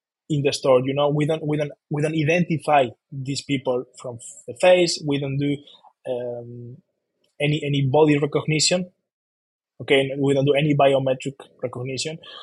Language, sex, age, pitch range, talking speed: English, male, 20-39, 130-155 Hz, 155 wpm